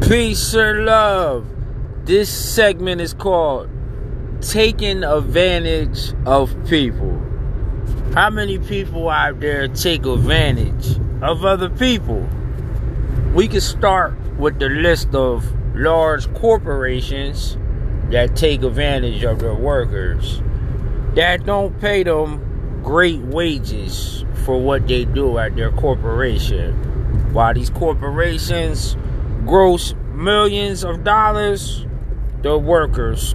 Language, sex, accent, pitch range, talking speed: English, male, American, 110-150 Hz, 105 wpm